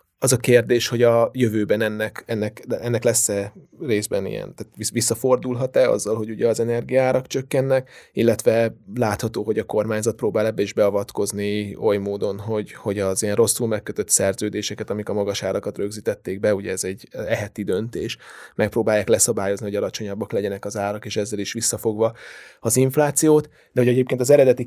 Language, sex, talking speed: Hungarian, male, 165 wpm